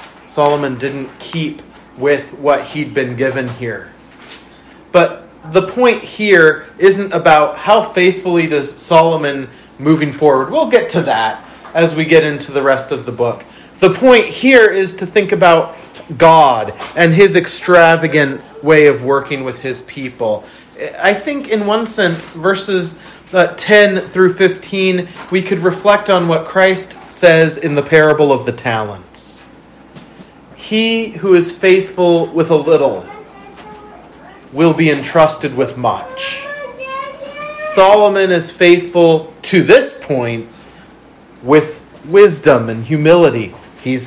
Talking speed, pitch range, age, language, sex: 130 wpm, 135-185 Hz, 30-49, English, male